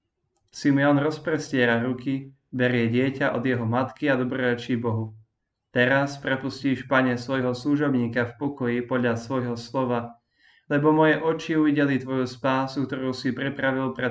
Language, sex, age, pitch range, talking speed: Slovak, male, 20-39, 120-140 Hz, 130 wpm